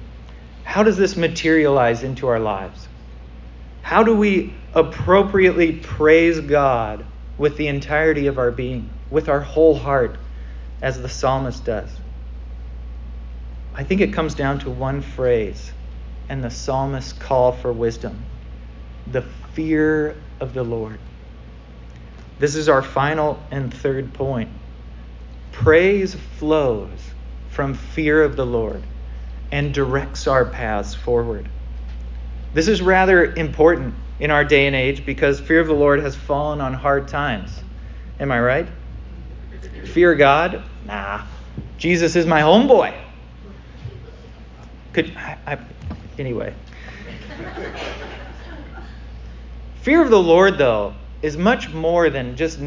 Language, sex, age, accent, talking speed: English, male, 40-59, American, 125 wpm